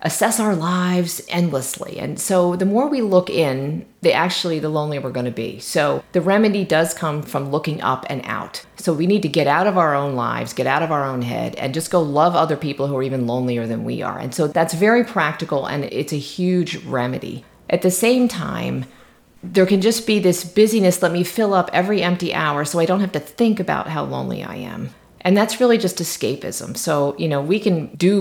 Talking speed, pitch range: 230 wpm, 145-190 Hz